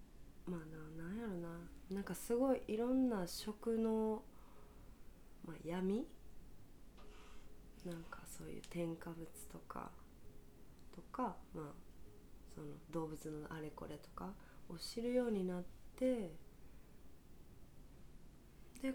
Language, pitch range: Japanese, 165-205 Hz